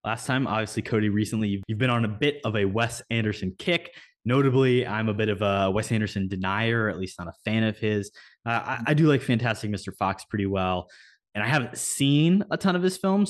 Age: 20-39